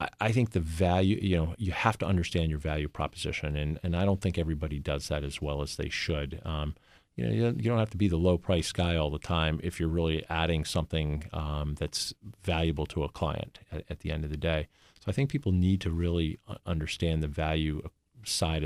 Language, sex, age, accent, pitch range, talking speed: English, male, 40-59, American, 75-95 Hz, 225 wpm